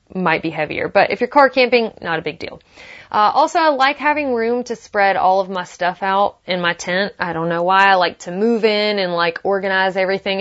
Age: 20-39